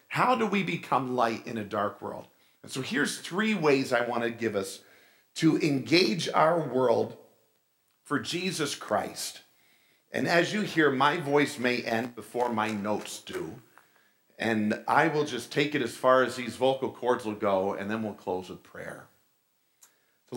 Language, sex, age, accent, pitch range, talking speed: English, male, 50-69, American, 125-175 Hz, 170 wpm